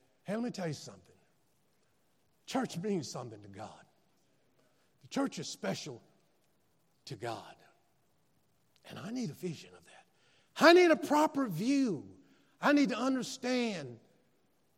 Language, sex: English, male